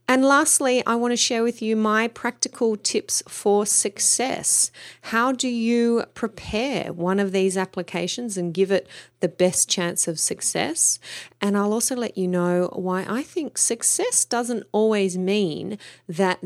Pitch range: 170-225 Hz